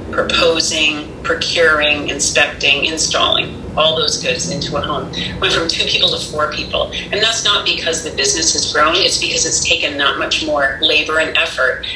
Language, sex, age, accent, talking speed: English, female, 40-59, American, 175 wpm